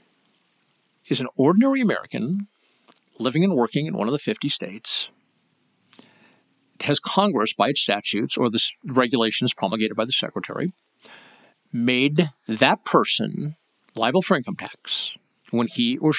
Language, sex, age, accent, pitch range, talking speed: English, male, 50-69, American, 120-170 Hz, 130 wpm